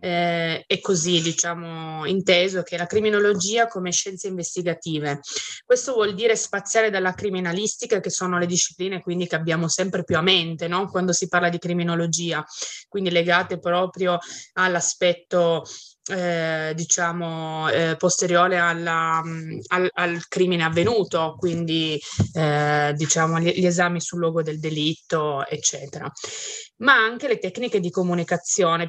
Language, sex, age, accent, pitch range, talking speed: Italian, female, 20-39, native, 170-200 Hz, 135 wpm